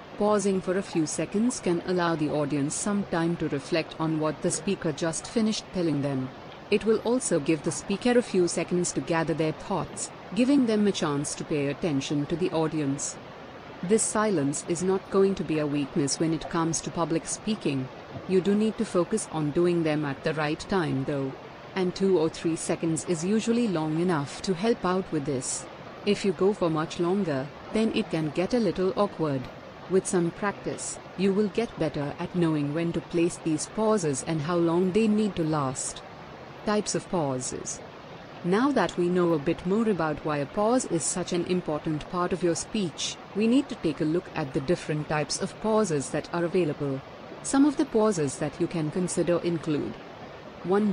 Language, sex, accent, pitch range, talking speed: Hindi, female, native, 155-195 Hz, 195 wpm